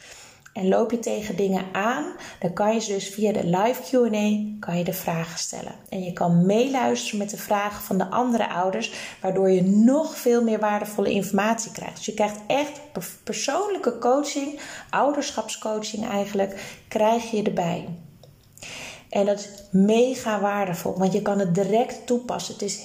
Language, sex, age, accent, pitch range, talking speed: Dutch, female, 20-39, Dutch, 190-235 Hz, 165 wpm